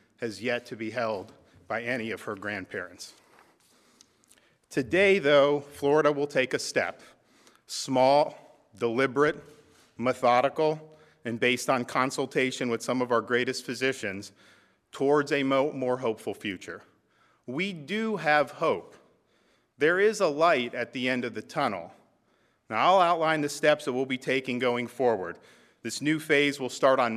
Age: 40-59